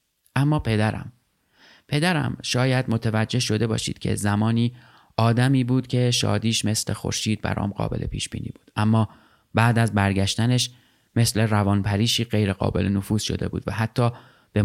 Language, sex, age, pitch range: Persian, male, 30-49, 100-120 Hz